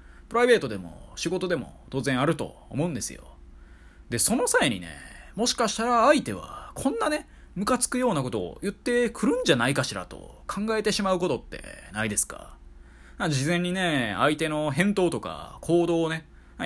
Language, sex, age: Japanese, male, 20-39